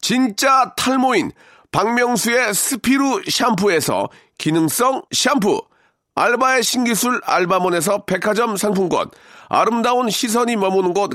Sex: male